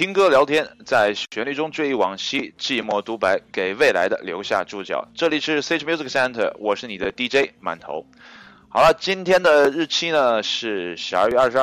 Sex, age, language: male, 20-39, Chinese